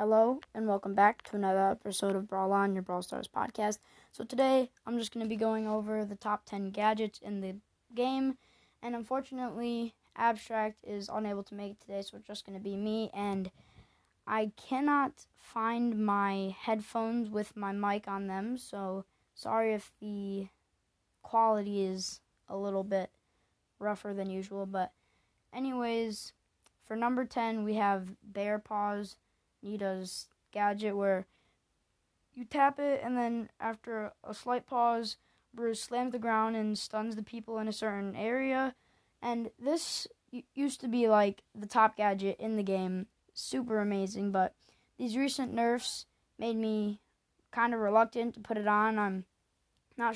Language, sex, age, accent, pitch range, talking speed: English, female, 20-39, American, 200-235 Hz, 155 wpm